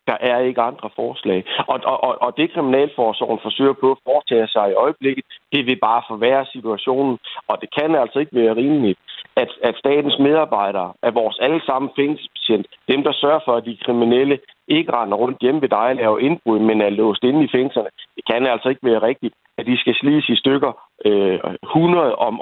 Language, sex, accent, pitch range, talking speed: Danish, male, native, 115-145 Hz, 200 wpm